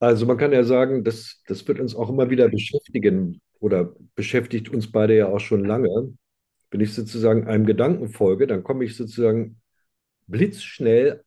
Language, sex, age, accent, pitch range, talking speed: German, male, 50-69, German, 105-125 Hz, 170 wpm